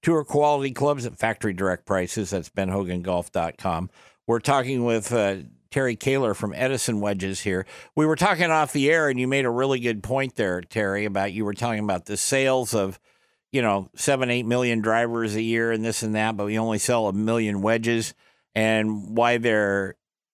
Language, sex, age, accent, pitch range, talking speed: English, male, 50-69, American, 110-130 Hz, 190 wpm